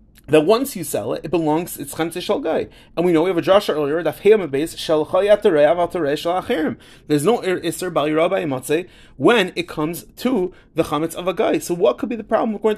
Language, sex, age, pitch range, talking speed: English, male, 30-49, 150-205 Hz, 190 wpm